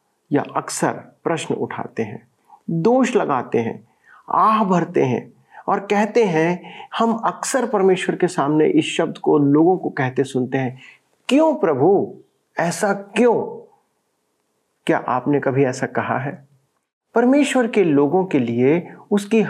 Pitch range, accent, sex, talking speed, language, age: 140-205 Hz, native, male, 130 wpm, Hindi, 50-69